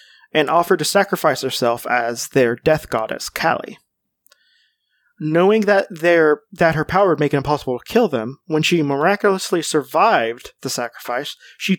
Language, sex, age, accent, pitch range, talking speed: English, male, 20-39, American, 140-190 Hz, 155 wpm